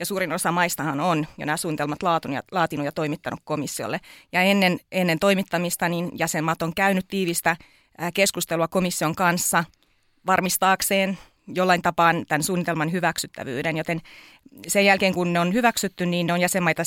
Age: 30-49